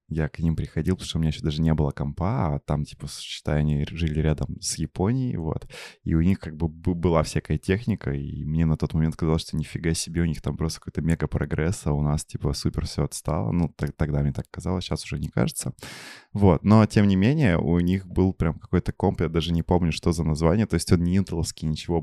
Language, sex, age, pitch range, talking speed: Russian, male, 20-39, 80-95 Hz, 240 wpm